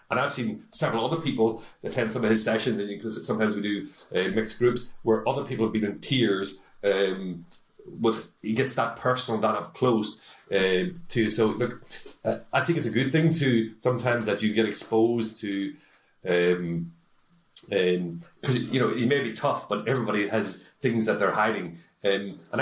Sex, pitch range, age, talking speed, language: male, 100-120 Hz, 40-59, 185 wpm, English